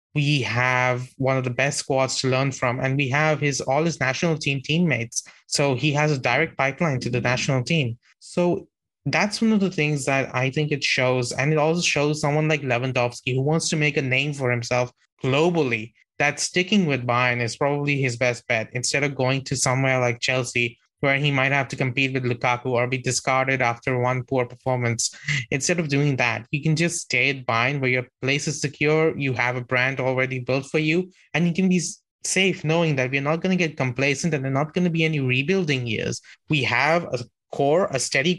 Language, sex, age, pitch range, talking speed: English, male, 20-39, 130-155 Hz, 215 wpm